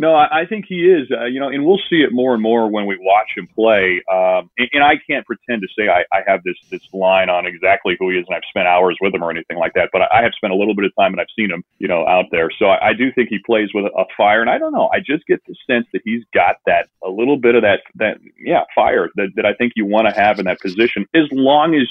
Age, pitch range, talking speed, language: 30-49, 100-130 Hz, 305 wpm, English